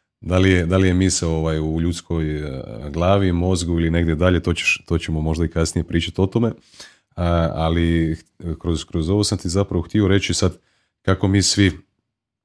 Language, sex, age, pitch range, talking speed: Croatian, male, 30-49, 80-90 Hz, 185 wpm